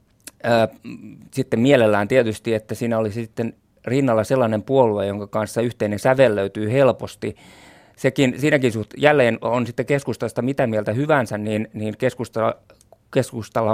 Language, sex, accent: Finnish, male, native